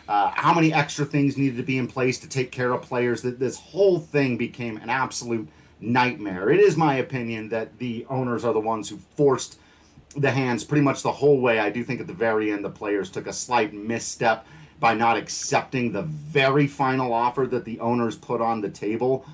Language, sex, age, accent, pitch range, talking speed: English, male, 40-59, American, 115-150 Hz, 215 wpm